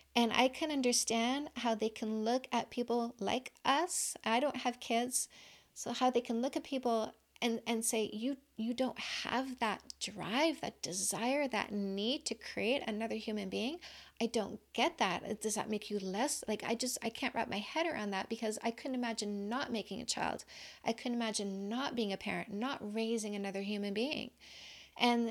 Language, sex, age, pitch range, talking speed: English, female, 40-59, 220-255 Hz, 190 wpm